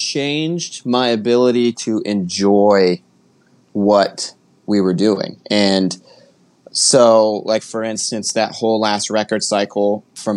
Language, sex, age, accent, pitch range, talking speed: English, male, 20-39, American, 95-115 Hz, 115 wpm